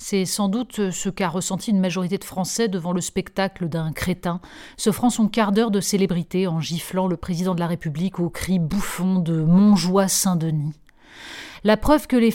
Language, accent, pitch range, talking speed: French, French, 175-225 Hz, 195 wpm